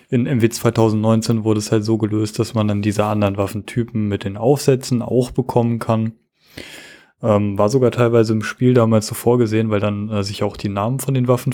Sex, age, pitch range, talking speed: male, 20-39, 110-125 Hz, 205 wpm